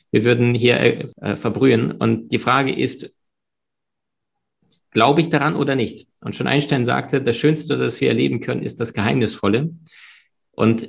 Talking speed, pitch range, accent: 150 wpm, 115-140 Hz, German